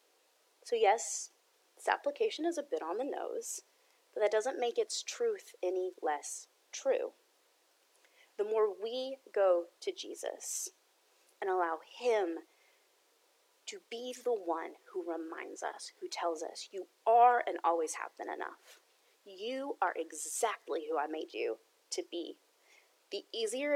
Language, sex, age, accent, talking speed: English, female, 30-49, American, 140 wpm